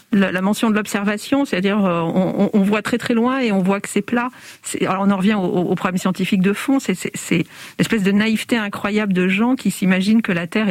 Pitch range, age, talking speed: 190-235 Hz, 50-69, 225 wpm